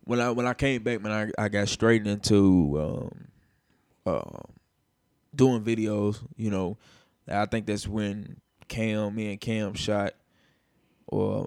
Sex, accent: male, American